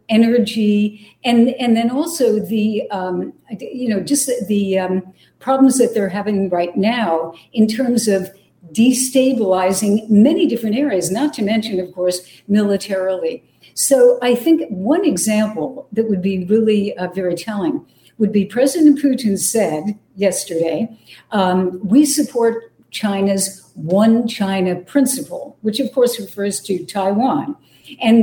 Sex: female